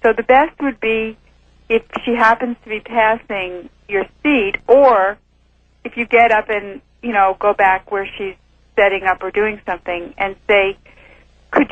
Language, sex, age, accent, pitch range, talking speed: English, female, 40-59, American, 200-250 Hz, 170 wpm